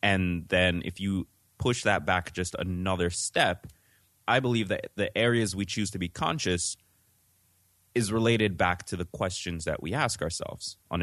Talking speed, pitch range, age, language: 170 wpm, 85-110 Hz, 20-39, English